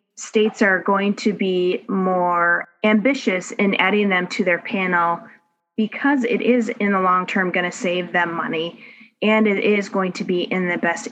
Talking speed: 185 wpm